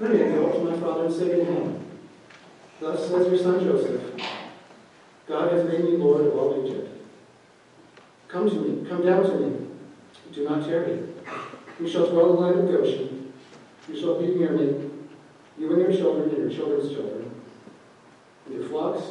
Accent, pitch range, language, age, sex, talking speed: American, 150-190 Hz, English, 50-69, male, 185 wpm